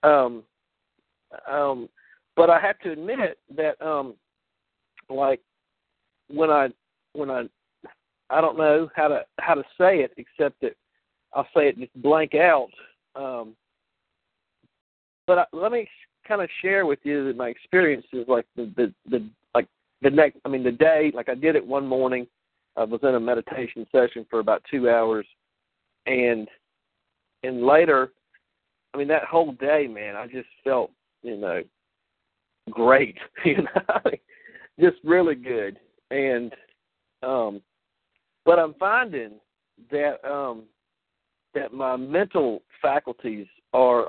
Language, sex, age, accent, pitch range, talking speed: English, male, 50-69, American, 120-160 Hz, 145 wpm